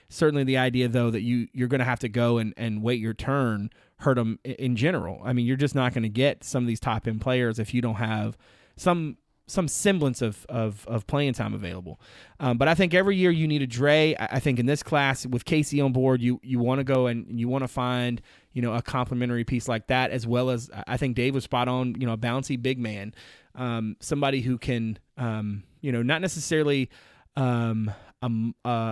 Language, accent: English, American